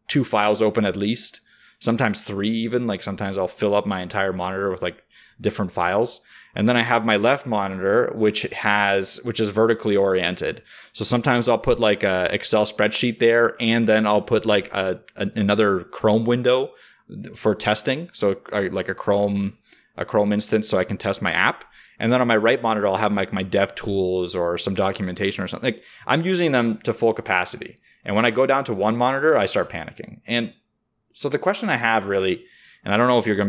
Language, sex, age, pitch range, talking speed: English, male, 20-39, 100-115 Hz, 205 wpm